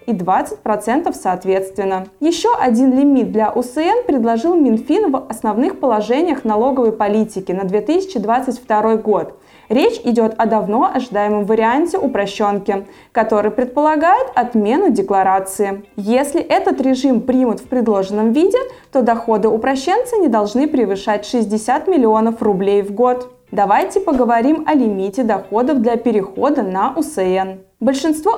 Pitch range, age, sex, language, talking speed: 215-295 Hz, 20-39, female, Russian, 120 wpm